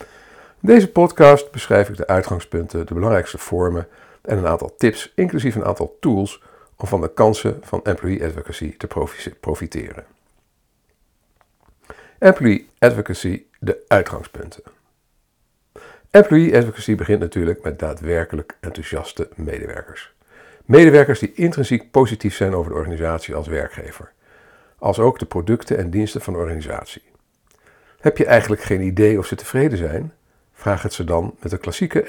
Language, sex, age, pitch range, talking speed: Dutch, male, 50-69, 90-135 Hz, 140 wpm